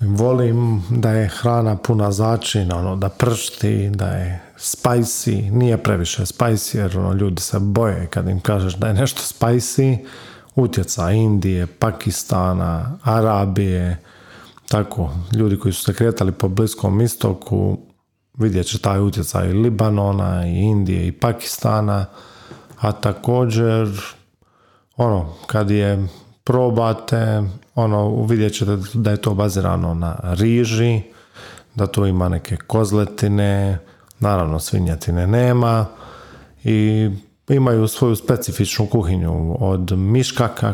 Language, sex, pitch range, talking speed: Croatian, male, 95-115 Hz, 115 wpm